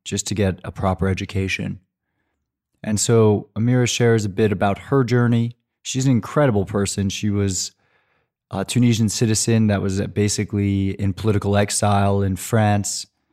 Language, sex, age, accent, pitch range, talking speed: English, male, 20-39, American, 95-110 Hz, 145 wpm